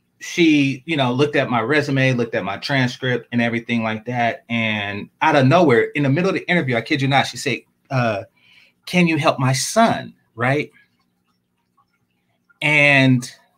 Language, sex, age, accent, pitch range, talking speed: English, male, 30-49, American, 130-185 Hz, 170 wpm